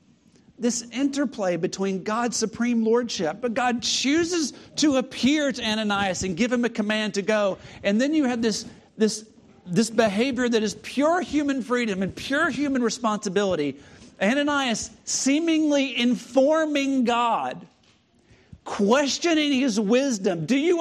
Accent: American